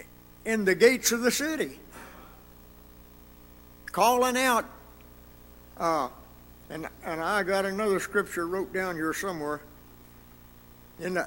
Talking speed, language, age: 105 wpm, English, 60-79